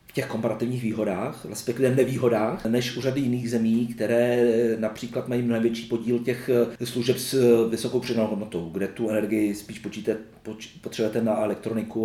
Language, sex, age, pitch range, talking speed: Czech, male, 40-59, 110-135 Hz, 145 wpm